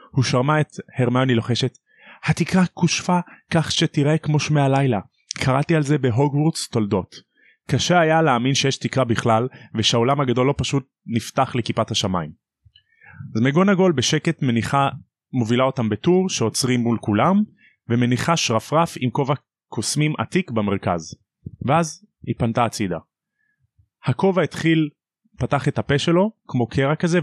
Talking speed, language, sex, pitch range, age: 130 wpm, Hebrew, male, 120-155 Hz, 30-49